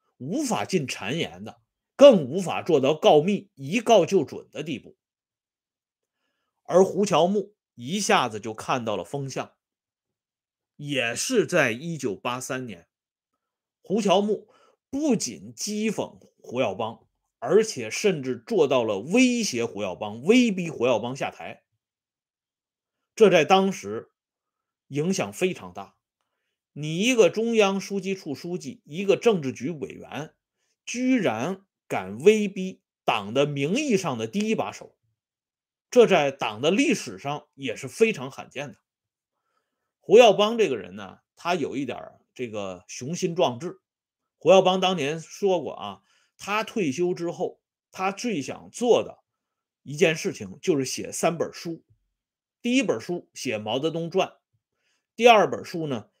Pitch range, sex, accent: 130-210 Hz, male, Chinese